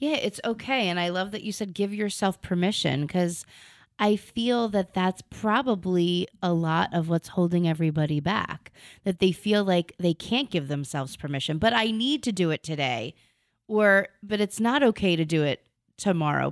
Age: 30-49